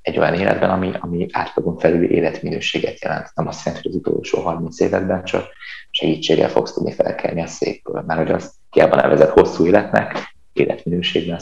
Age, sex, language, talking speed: 20-39, male, Hungarian, 170 wpm